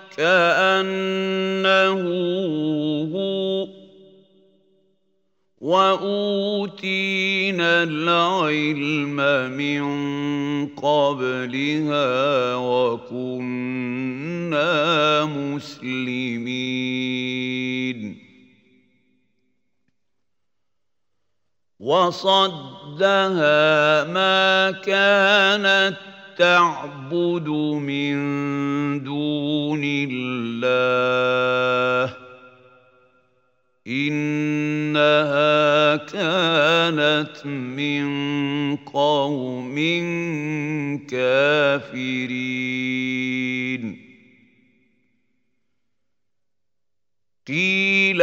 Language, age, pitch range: Arabic, 50-69, 130-190 Hz